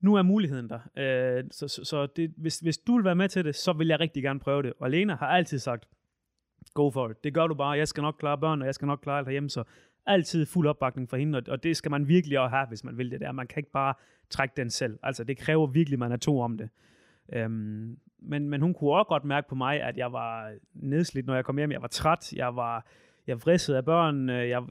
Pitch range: 125-160 Hz